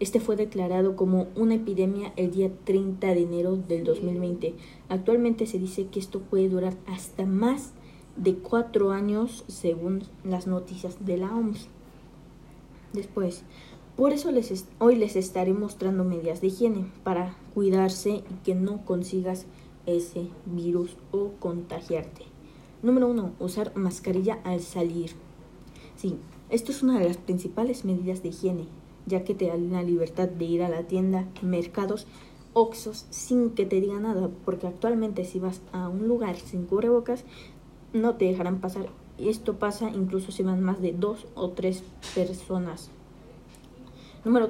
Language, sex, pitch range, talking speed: Spanish, female, 180-210 Hz, 150 wpm